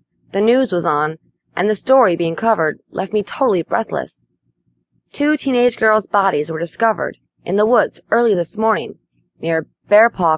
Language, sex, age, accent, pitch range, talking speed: English, female, 20-39, American, 140-225 Hz, 155 wpm